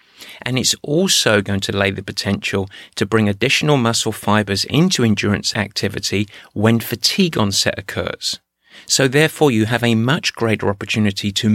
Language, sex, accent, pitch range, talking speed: English, male, British, 105-140 Hz, 150 wpm